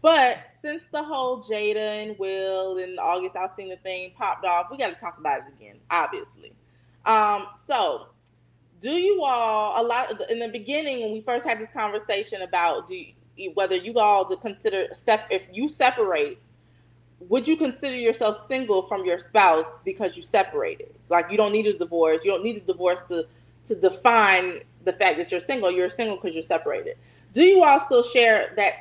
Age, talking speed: 20-39, 195 wpm